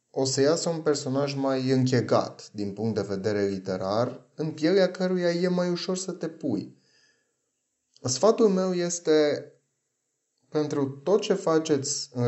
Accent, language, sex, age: native, Romanian, male, 30-49